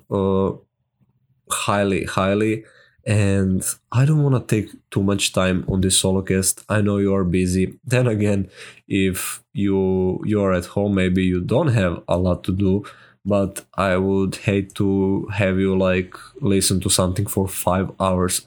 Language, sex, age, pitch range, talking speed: English, male, 20-39, 95-105 Hz, 165 wpm